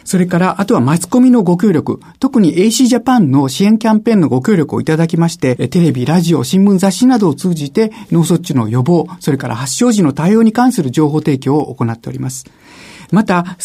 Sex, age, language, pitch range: male, 50-69, Japanese, 145-210 Hz